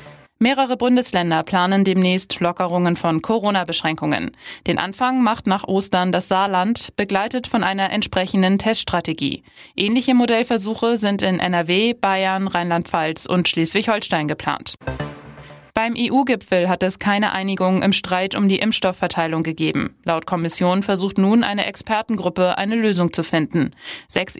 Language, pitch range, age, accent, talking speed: German, 175-210 Hz, 20-39, German, 130 wpm